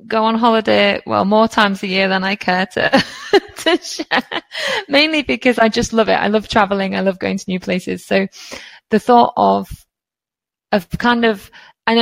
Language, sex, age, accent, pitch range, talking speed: English, female, 20-39, British, 190-240 Hz, 185 wpm